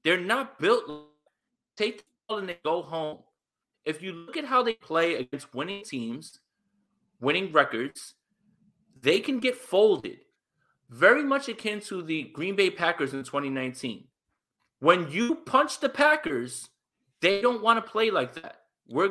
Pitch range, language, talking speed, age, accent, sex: 140-220 Hz, English, 160 wpm, 30-49, American, male